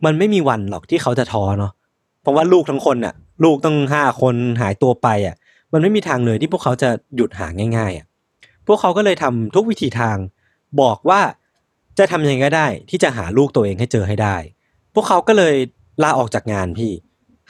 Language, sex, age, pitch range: Thai, male, 20-39, 115-165 Hz